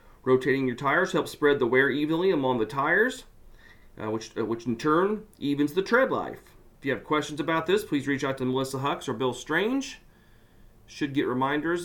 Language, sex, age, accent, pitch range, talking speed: English, male, 40-59, American, 135-175 Hz, 195 wpm